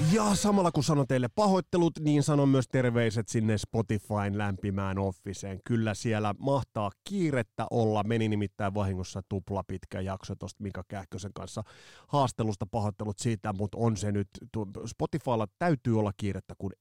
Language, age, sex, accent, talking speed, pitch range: Finnish, 30-49, male, native, 145 wpm, 100-120 Hz